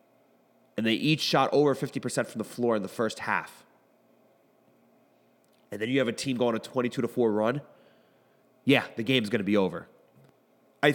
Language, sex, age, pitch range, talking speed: English, male, 30-49, 110-145 Hz, 175 wpm